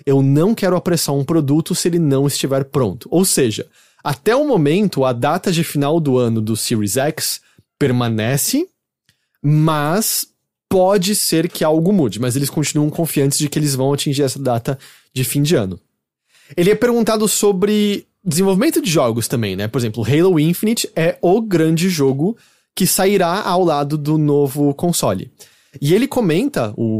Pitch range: 140-190 Hz